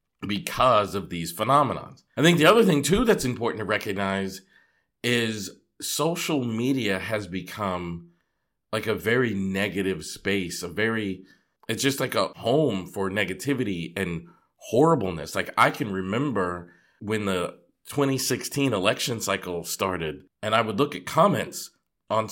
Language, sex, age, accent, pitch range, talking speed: English, male, 40-59, American, 95-130 Hz, 140 wpm